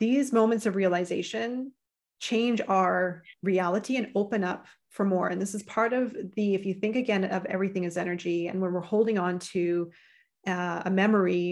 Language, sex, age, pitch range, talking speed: English, female, 30-49, 180-215 Hz, 180 wpm